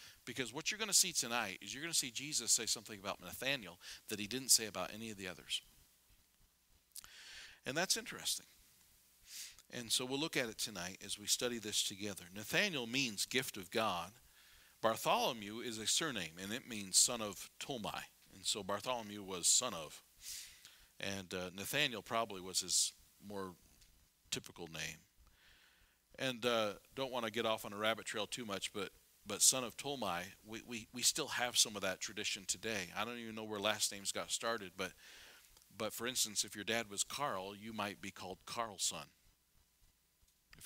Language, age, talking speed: English, 50-69, 180 wpm